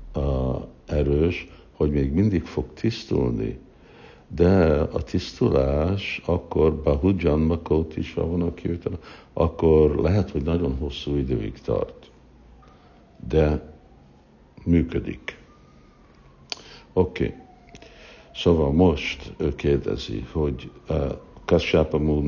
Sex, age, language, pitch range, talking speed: male, 60-79, Hungarian, 65-75 Hz, 85 wpm